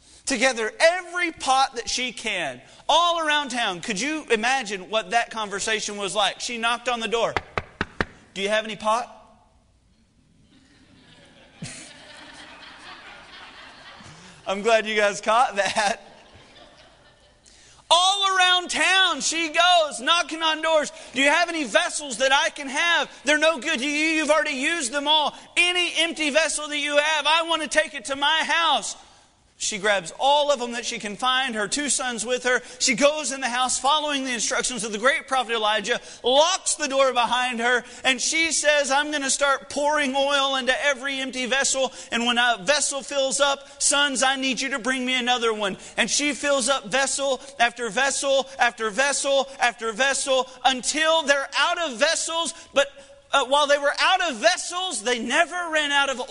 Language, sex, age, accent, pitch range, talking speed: English, male, 40-59, American, 245-305 Hz, 170 wpm